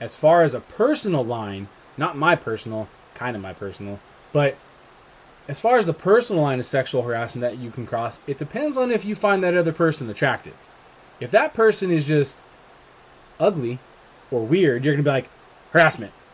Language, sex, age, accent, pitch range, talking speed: English, male, 20-39, American, 130-160 Hz, 185 wpm